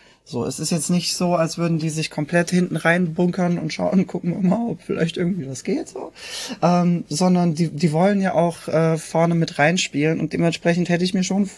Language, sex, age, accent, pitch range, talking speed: German, male, 20-39, German, 155-185 Hz, 220 wpm